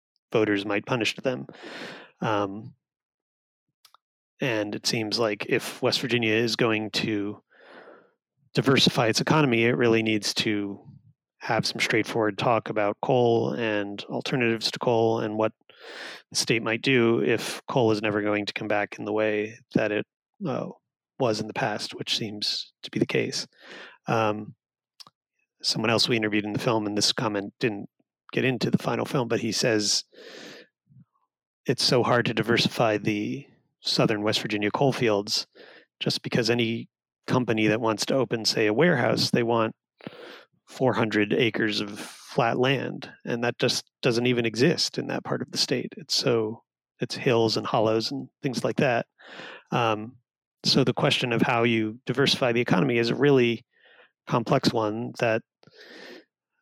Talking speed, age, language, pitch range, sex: 155 wpm, 30-49, English, 105-120 Hz, male